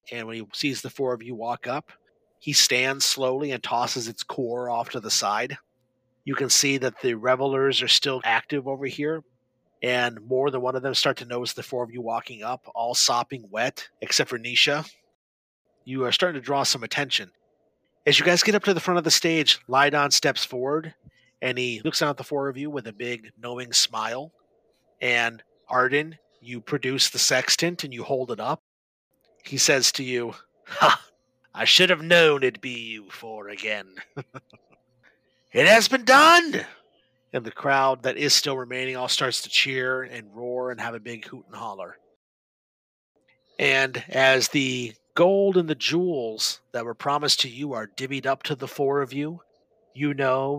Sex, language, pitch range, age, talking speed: male, English, 120-145 Hz, 30-49, 190 wpm